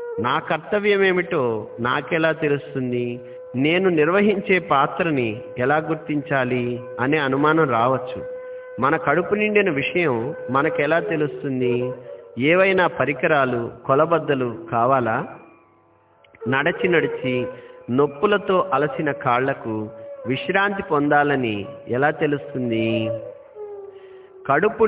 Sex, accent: male, native